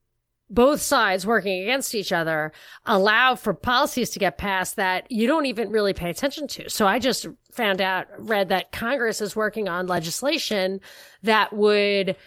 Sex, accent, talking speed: female, American, 165 wpm